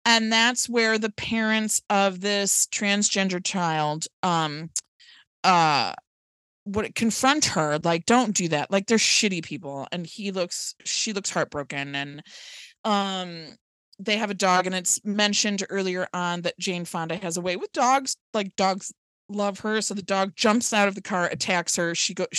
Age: 20-39